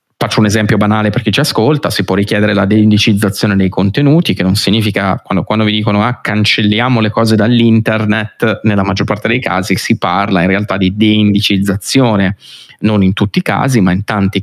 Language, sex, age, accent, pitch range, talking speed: Italian, male, 20-39, native, 95-110 Hz, 185 wpm